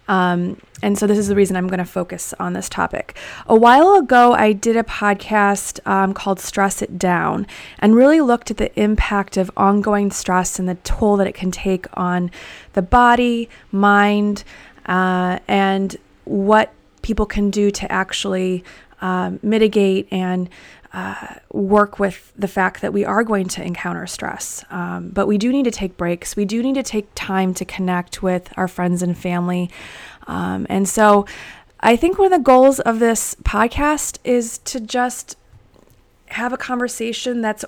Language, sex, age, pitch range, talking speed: English, female, 30-49, 185-210 Hz, 175 wpm